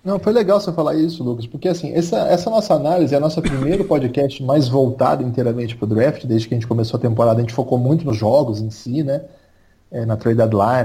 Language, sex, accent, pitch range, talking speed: Portuguese, male, Brazilian, 135-205 Hz, 245 wpm